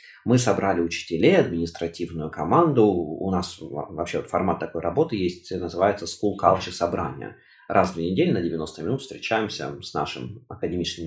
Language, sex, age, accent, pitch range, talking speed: Russian, male, 20-39, native, 85-110 Hz, 145 wpm